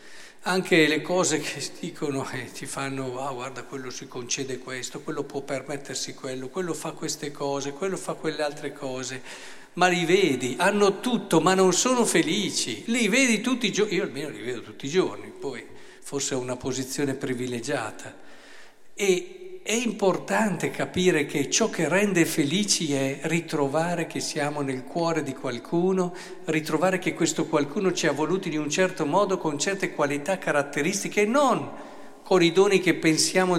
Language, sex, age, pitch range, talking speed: Italian, male, 50-69, 140-200 Hz, 170 wpm